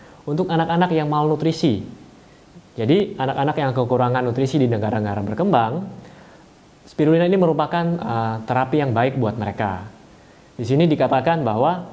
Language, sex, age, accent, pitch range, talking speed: Indonesian, male, 20-39, native, 115-150 Hz, 125 wpm